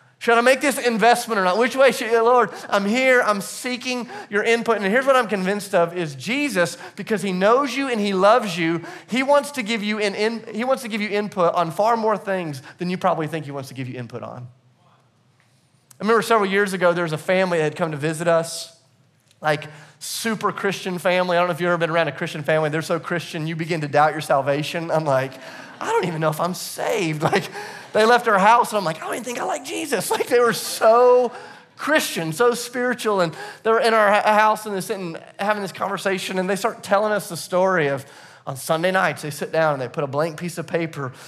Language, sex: English, male